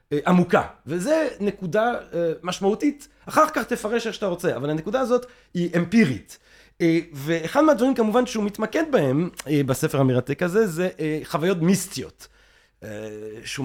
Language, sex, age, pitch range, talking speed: Hebrew, male, 30-49, 150-210 Hz, 125 wpm